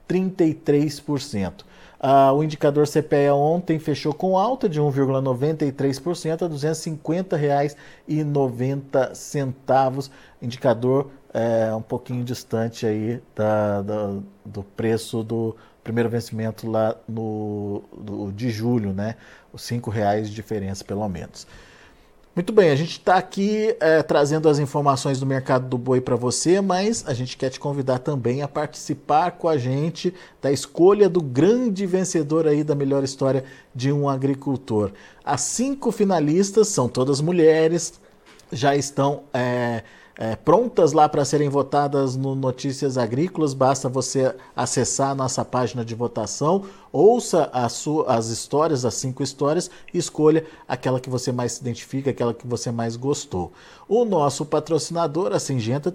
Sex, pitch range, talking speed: male, 120-155 Hz, 140 wpm